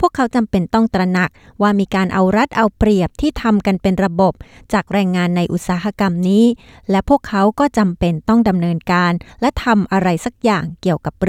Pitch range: 175-225 Hz